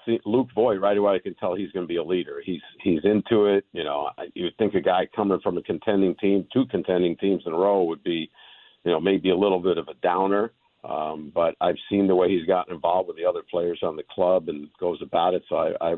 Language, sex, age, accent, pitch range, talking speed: English, male, 50-69, American, 90-115 Hz, 260 wpm